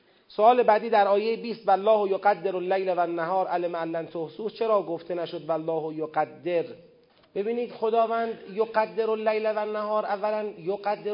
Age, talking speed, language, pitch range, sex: 40-59, 160 wpm, Persian, 170-210 Hz, male